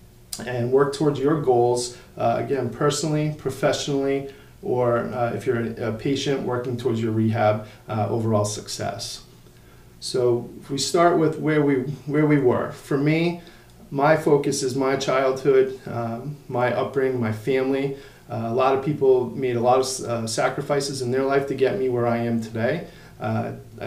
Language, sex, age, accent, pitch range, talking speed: English, male, 40-59, American, 115-140 Hz, 165 wpm